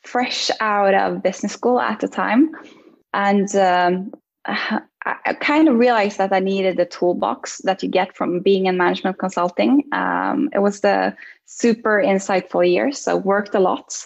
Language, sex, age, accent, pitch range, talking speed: English, female, 10-29, Norwegian, 185-215 Hz, 165 wpm